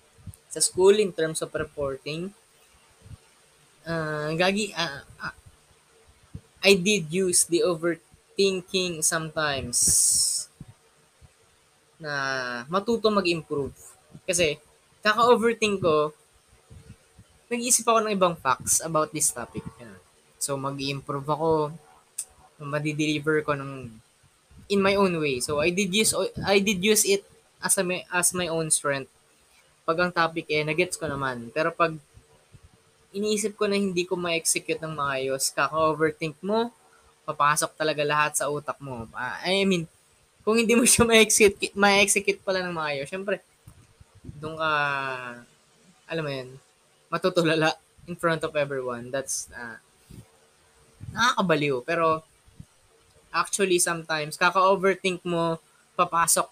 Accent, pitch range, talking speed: native, 135-180 Hz, 120 wpm